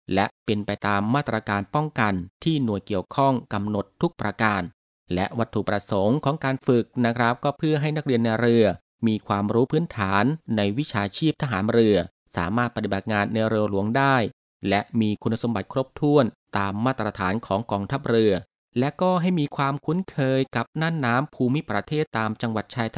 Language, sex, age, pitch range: Thai, male, 30-49, 110-140 Hz